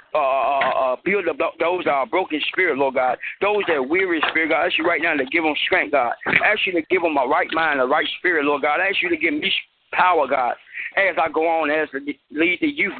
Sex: male